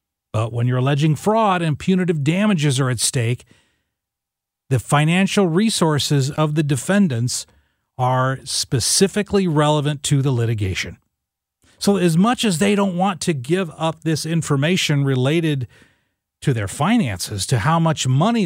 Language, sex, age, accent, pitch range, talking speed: English, male, 40-59, American, 130-190 Hz, 140 wpm